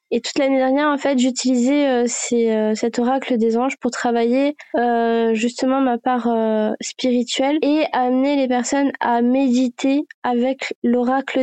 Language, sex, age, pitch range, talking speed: French, female, 20-39, 240-275 Hz, 155 wpm